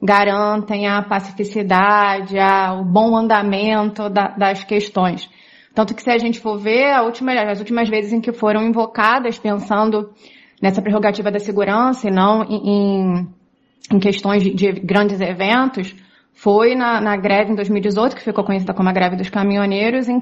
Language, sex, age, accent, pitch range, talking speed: Portuguese, female, 20-39, Brazilian, 195-220 Hz, 165 wpm